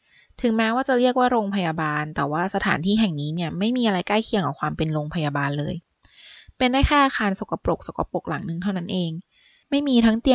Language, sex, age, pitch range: Thai, female, 20-39, 170-225 Hz